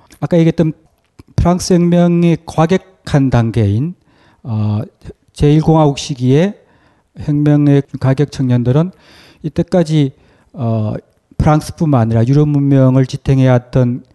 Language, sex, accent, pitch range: Korean, male, native, 125-165 Hz